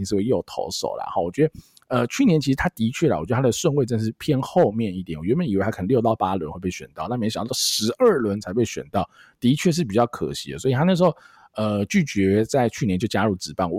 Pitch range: 95-145 Hz